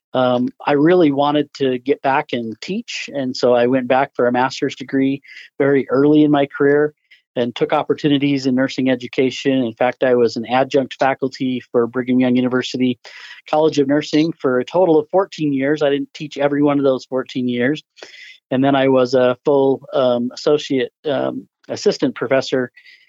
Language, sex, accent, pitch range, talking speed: English, male, American, 130-150 Hz, 180 wpm